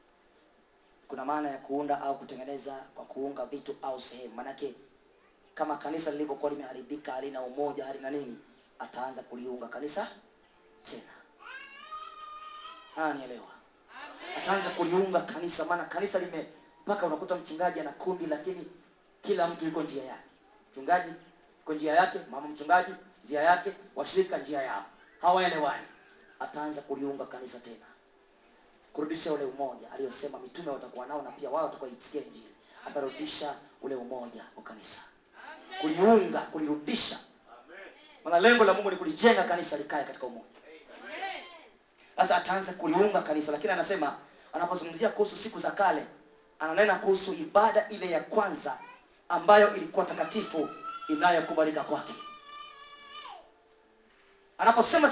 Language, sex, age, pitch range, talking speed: English, male, 30-49, 145-230 Hz, 125 wpm